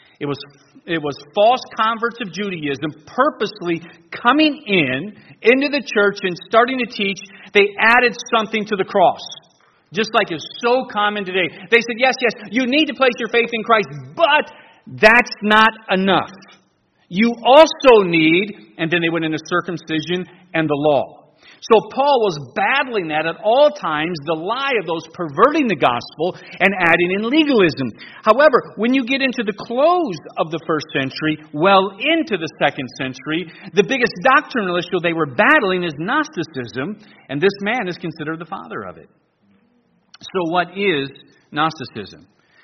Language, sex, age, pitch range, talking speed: English, male, 40-59, 165-230 Hz, 160 wpm